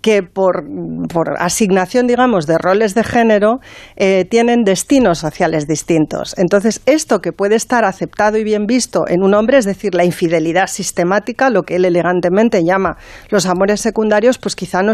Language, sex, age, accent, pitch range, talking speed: Spanish, female, 40-59, Spanish, 180-245 Hz, 170 wpm